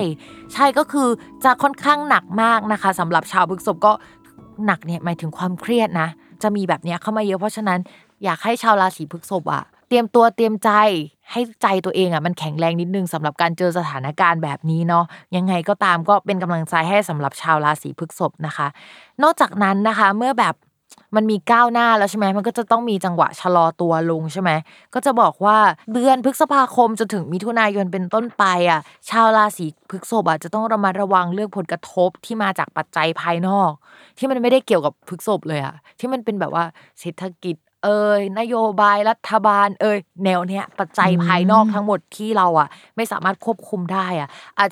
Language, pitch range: Thai, 170-215 Hz